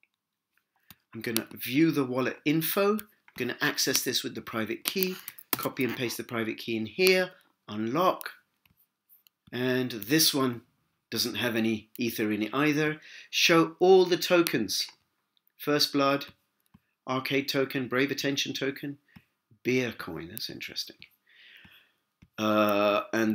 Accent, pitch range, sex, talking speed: British, 120-165 Hz, male, 125 wpm